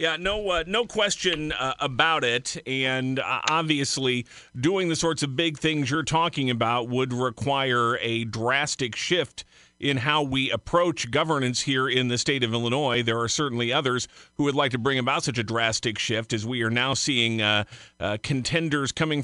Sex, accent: male, American